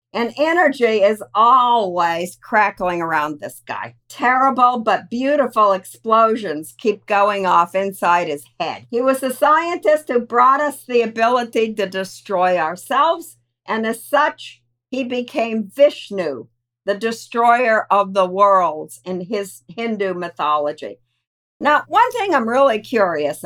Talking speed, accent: 130 wpm, American